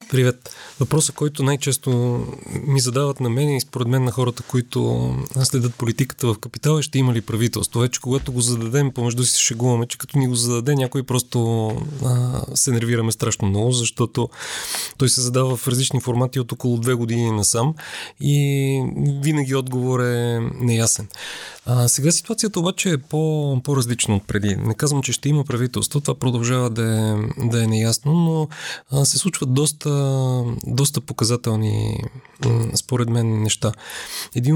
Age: 30-49